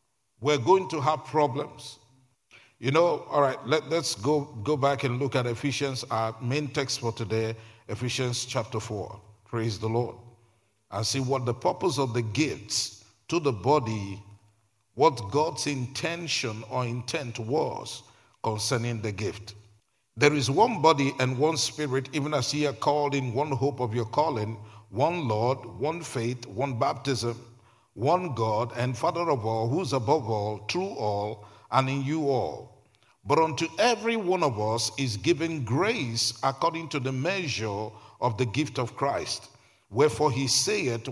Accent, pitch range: Nigerian, 115-150 Hz